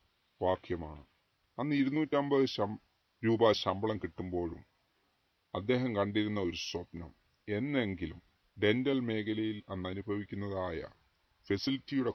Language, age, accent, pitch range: Hindi, 30-49, native, 90-115 Hz